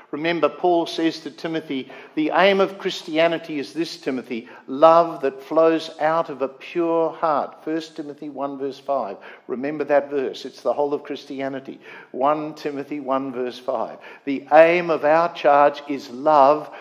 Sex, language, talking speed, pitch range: male, English, 160 wpm, 140-200 Hz